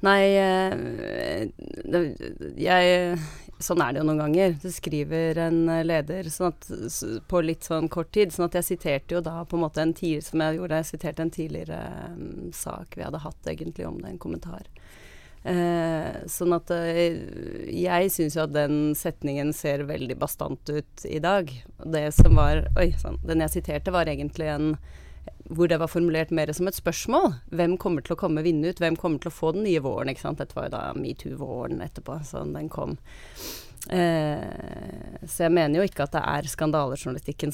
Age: 30-49